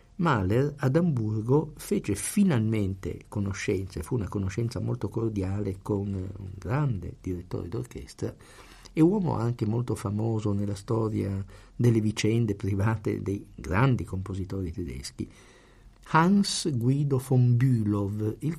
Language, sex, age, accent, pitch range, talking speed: Italian, male, 50-69, native, 100-130 Hz, 115 wpm